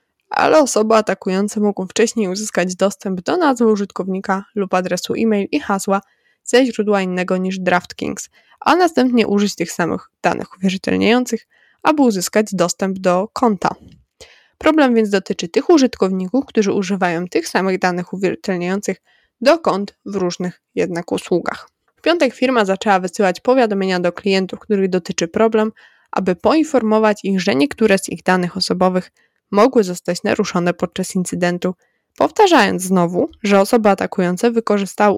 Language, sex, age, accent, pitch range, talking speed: Polish, female, 20-39, native, 185-225 Hz, 135 wpm